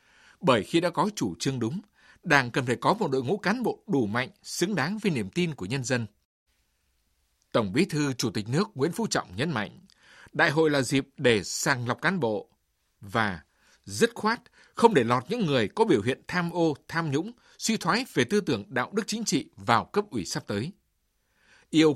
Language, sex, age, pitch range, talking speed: Vietnamese, male, 60-79, 130-205 Hz, 210 wpm